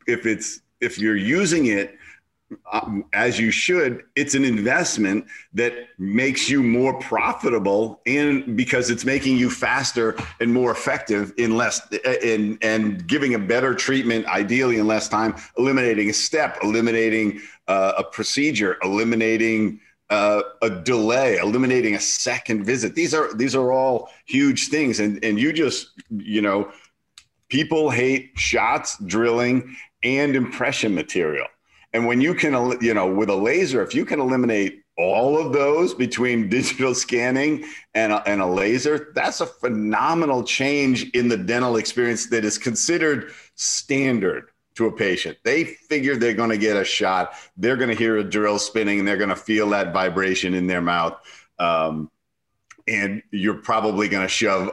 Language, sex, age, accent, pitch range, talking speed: English, male, 50-69, American, 105-130 Hz, 155 wpm